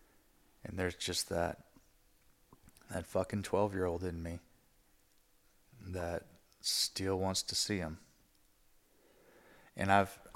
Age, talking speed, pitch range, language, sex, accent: 30-49, 100 wpm, 85-105 Hz, English, male, American